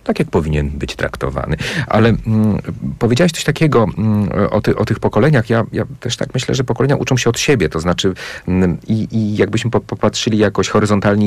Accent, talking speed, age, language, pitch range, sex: native, 190 wpm, 40-59, Polish, 85-115 Hz, male